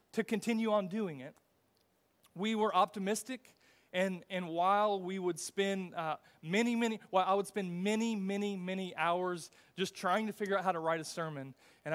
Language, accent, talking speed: English, American, 180 wpm